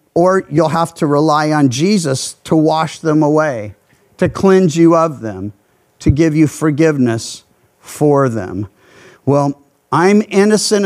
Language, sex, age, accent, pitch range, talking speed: English, male, 50-69, American, 155-230 Hz, 140 wpm